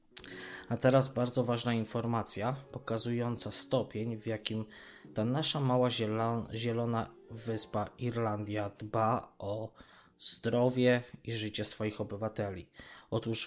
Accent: native